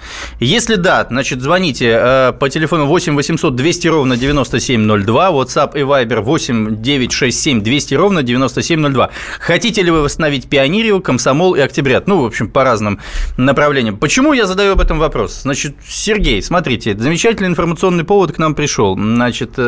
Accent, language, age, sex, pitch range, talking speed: native, Russian, 20-39, male, 125-170 Hz, 150 wpm